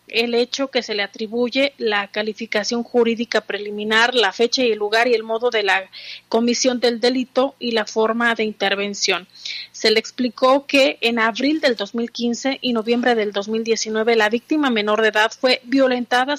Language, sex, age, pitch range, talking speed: Spanish, female, 30-49, 220-250 Hz, 170 wpm